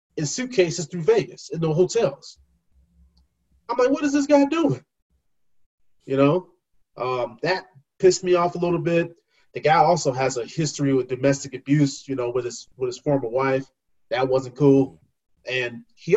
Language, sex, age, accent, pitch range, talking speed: English, male, 30-49, American, 135-175 Hz, 170 wpm